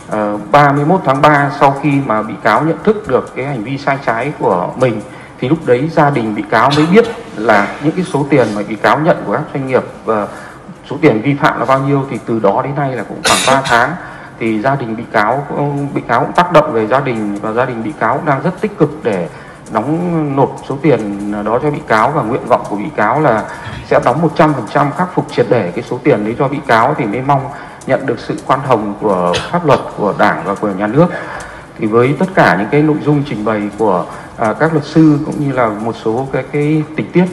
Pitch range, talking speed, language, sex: 125-160 Hz, 245 wpm, Vietnamese, male